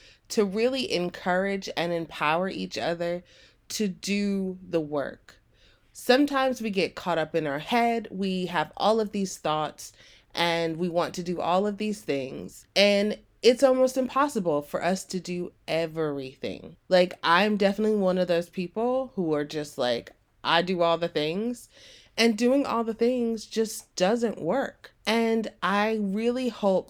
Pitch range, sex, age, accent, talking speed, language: 165-215 Hz, female, 30-49, American, 160 wpm, English